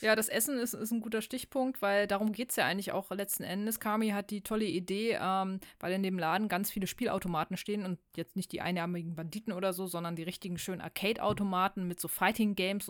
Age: 20-39